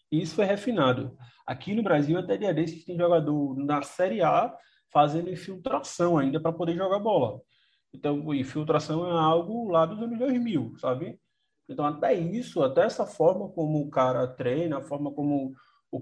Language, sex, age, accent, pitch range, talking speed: Portuguese, male, 20-39, Brazilian, 135-170 Hz, 175 wpm